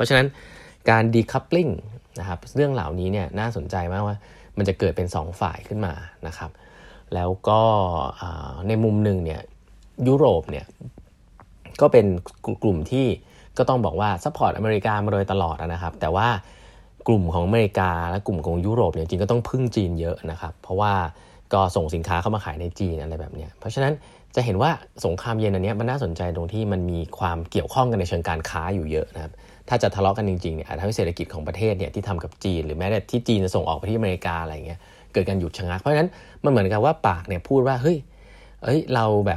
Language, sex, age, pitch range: Thai, male, 30-49, 85-110 Hz